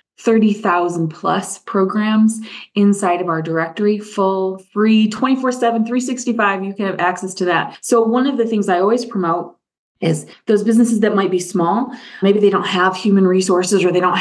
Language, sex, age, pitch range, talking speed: English, female, 20-39, 180-230 Hz, 170 wpm